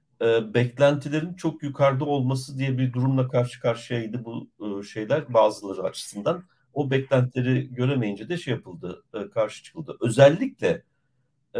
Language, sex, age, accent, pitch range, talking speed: Turkish, male, 50-69, native, 110-140 Hz, 115 wpm